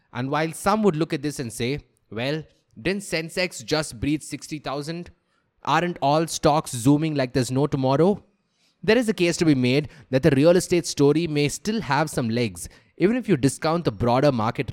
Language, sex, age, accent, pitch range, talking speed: English, male, 20-39, Indian, 125-170 Hz, 190 wpm